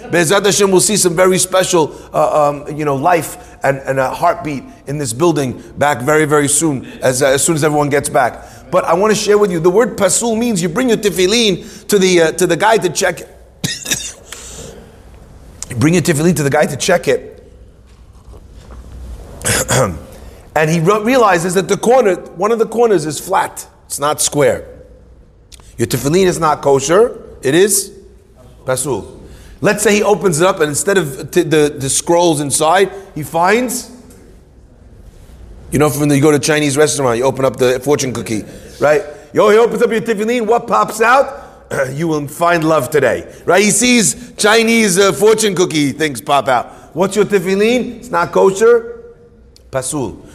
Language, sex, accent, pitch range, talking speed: English, male, American, 140-205 Hz, 180 wpm